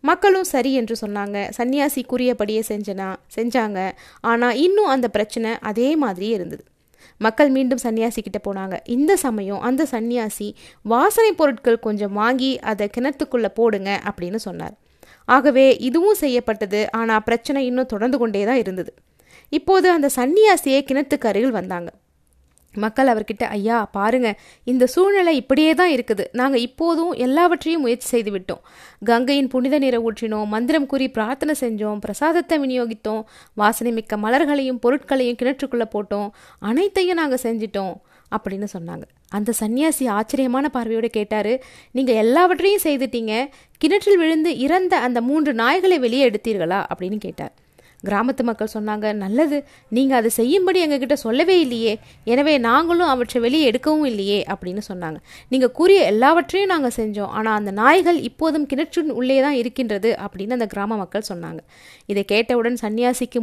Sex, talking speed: female, 130 wpm